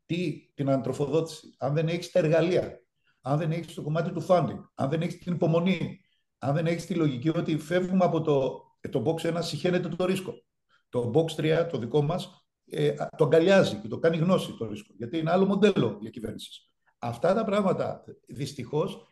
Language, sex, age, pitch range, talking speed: Greek, male, 50-69, 135-180 Hz, 180 wpm